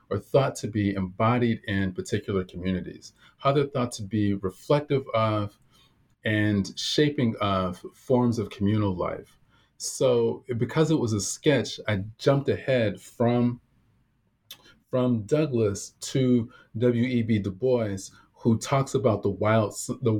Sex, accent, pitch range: male, American, 95-120 Hz